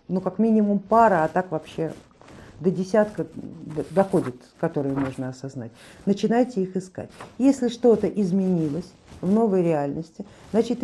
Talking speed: 125 wpm